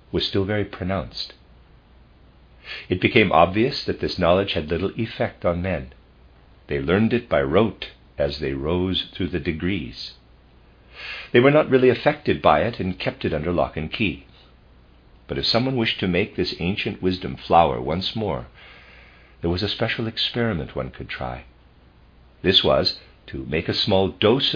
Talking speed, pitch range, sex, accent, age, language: 165 wpm, 65-105 Hz, male, American, 50-69, English